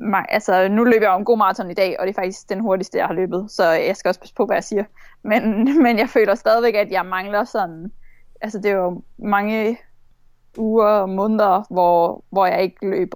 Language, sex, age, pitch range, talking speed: Danish, female, 20-39, 190-220 Hz, 225 wpm